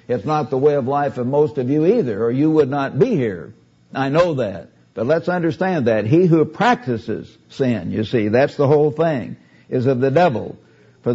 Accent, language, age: American, English, 60-79